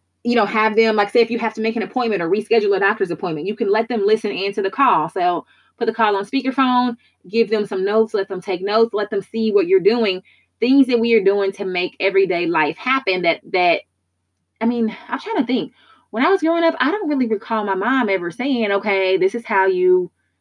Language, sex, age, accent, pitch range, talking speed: English, female, 20-39, American, 180-240 Hz, 240 wpm